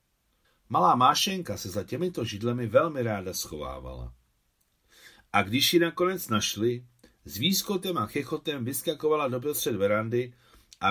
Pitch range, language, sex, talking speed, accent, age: 100-130 Hz, Czech, male, 125 wpm, native, 60-79